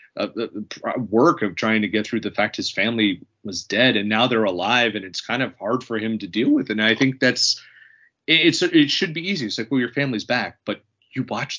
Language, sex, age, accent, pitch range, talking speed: English, male, 30-49, American, 105-130 Hz, 230 wpm